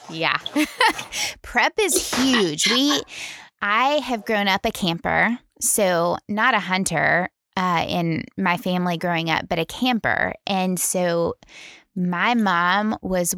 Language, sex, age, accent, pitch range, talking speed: English, female, 20-39, American, 175-225 Hz, 130 wpm